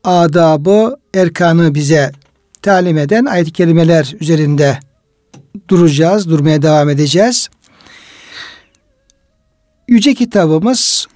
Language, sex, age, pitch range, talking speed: Turkish, male, 60-79, 165-215 Hz, 75 wpm